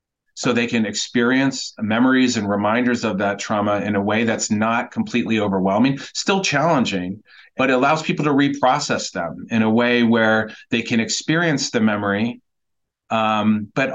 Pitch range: 105-130 Hz